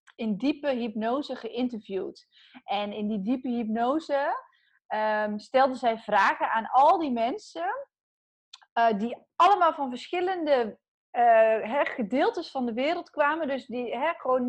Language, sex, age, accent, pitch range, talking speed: Dutch, female, 30-49, Dutch, 215-290 Hz, 135 wpm